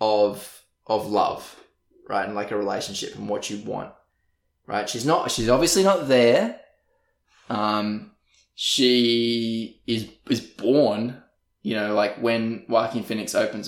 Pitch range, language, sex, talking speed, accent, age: 115-140 Hz, English, male, 135 wpm, Australian, 20-39